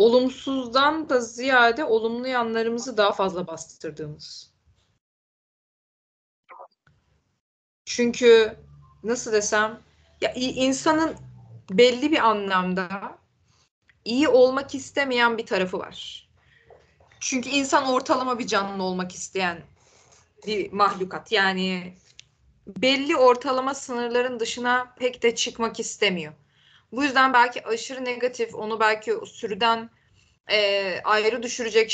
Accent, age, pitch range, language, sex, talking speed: native, 20-39, 195-250 Hz, Turkish, female, 95 wpm